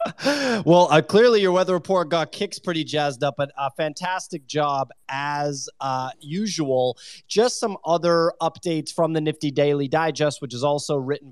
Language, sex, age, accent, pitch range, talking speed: English, male, 20-39, American, 135-165 Hz, 165 wpm